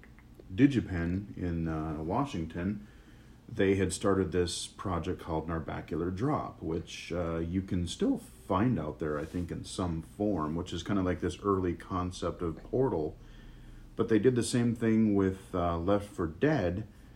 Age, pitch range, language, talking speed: 40-59, 85-115 Hz, English, 160 wpm